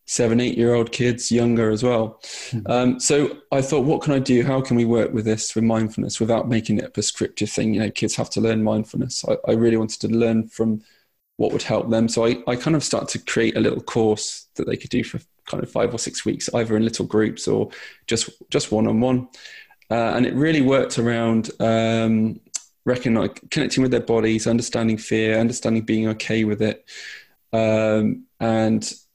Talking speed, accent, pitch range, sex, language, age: 200 wpm, British, 110-120 Hz, male, English, 20-39